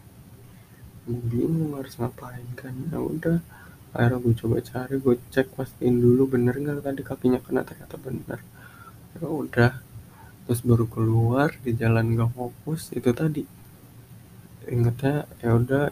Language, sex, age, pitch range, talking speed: Indonesian, male, 20-39, 115-135 Hz, 135 wpm